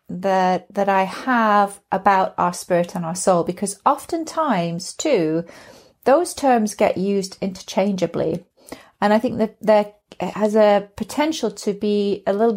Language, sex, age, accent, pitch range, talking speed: English, female, 30-49, British, 190-245 Hz, 145 wpm